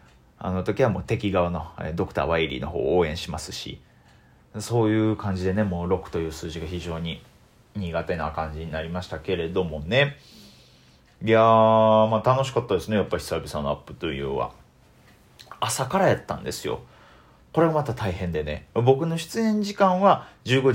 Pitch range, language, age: 85-120 Hz, Japanese, 40-59